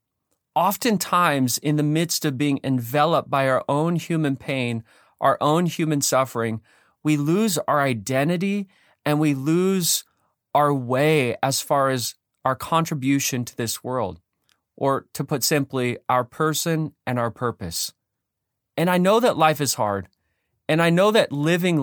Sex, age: male, 30-49